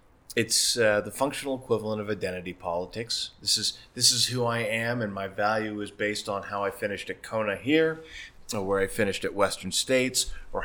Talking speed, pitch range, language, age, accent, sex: 195 wpm, 105-125 Hz, English, 30-49, American, male